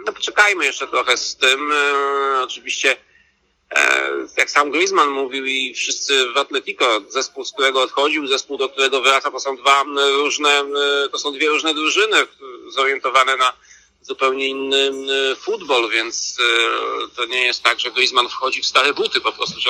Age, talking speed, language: 40-59, 155 wpm, Polish